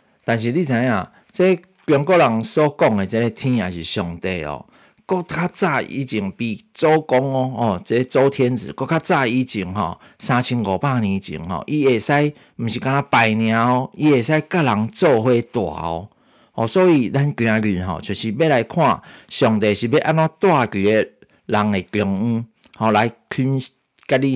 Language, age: Chinese, 50-69